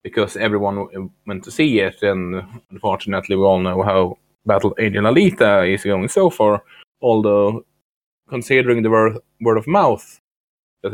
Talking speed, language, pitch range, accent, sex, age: 150 wpm, English, 95-115 Hz, Norwegian, male, 20-39